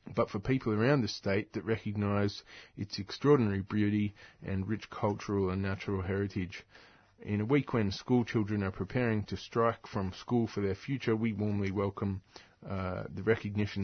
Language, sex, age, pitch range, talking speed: English, male, 20-39, 95-110 Hz, 165 wpm